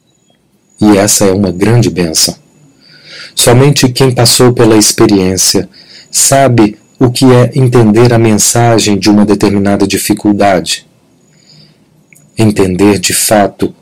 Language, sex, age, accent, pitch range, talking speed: Portuguese, male, 40-59, Brazilian, 100-130 Hz, 110 wpm